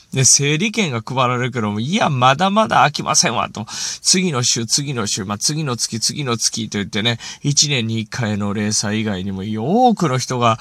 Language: Japanese